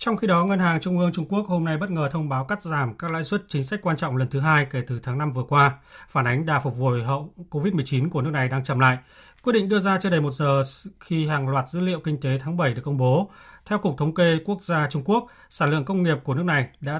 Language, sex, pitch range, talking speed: Vietnamese, male, 135-165 Hz, 290 wpm